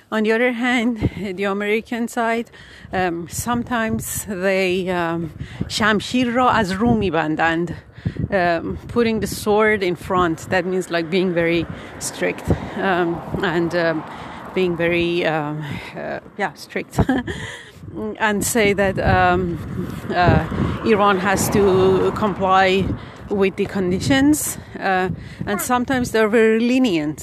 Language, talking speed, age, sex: Persian, 120 wpm, 40-59, female